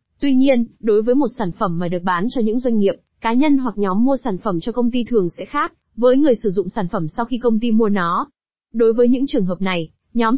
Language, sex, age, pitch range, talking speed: Vietnamese, female, 20-39, 200-245 Hz, 265 wpm